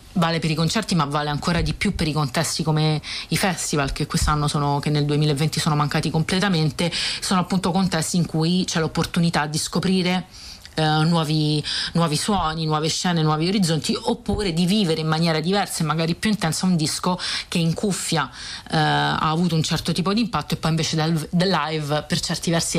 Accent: native